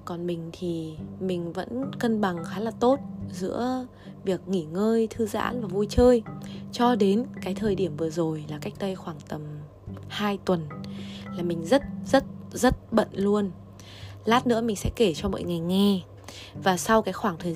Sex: female